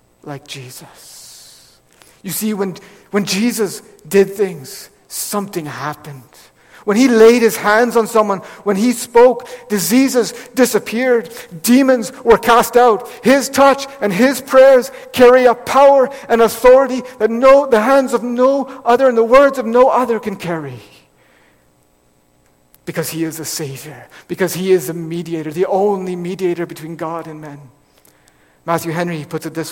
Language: English